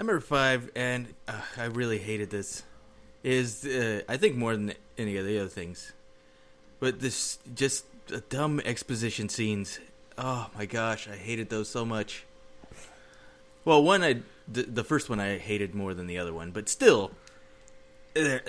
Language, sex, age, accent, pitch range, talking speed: English, male, 20-39, American, 105-130 Hz, 165 wpm